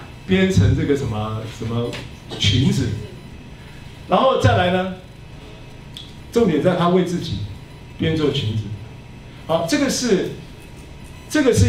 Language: Chinese